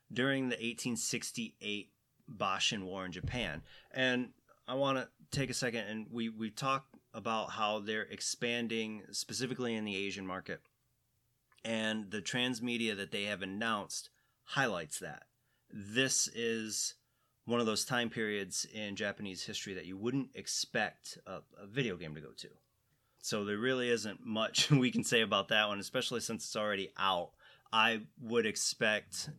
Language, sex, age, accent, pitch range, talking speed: English, male, 30-49, American, 110-130 Hz, 155 wpm